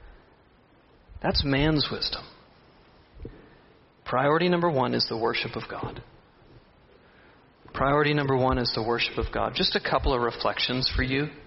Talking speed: 135 wpm